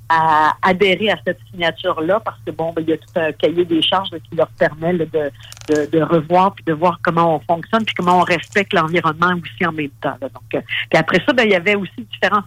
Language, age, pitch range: French, 50-69, 160-200 Hz